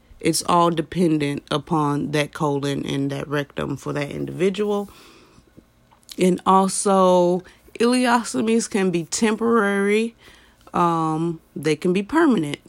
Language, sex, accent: English, female, American